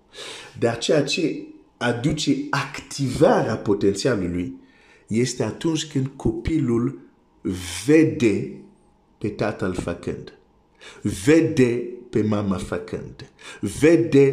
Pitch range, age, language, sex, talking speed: 110-150 Hz, 50-69, Romanian, male, 80 wpm